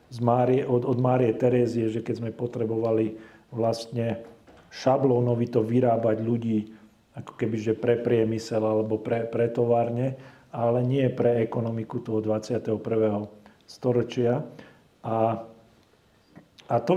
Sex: male